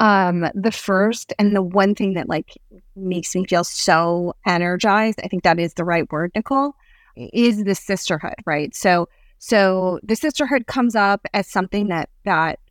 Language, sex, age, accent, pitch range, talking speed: English, female, 30-49, American, 175-205 Hz, 160 wpm